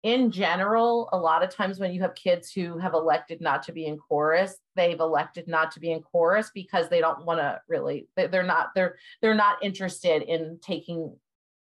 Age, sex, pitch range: 30-49, female, 165-210 Hz